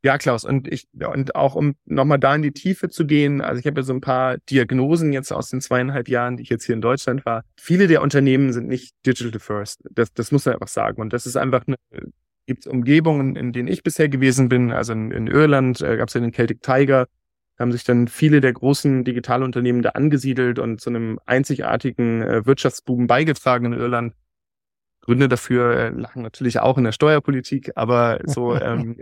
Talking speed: 205 wpm